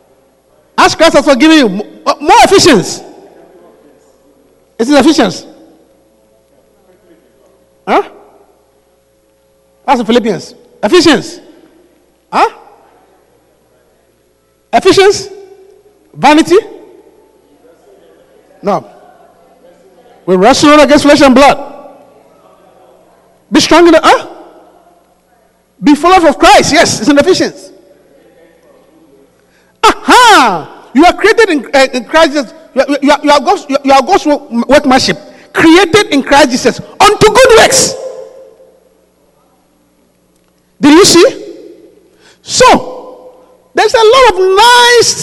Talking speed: 95 wpm